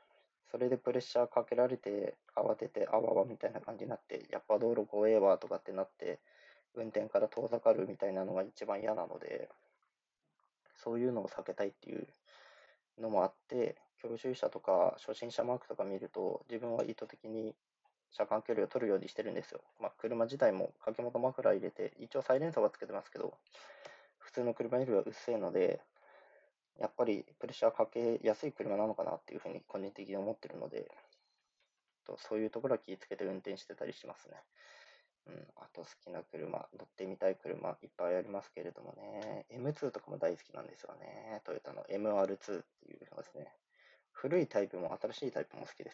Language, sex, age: Japanese, male, 20-39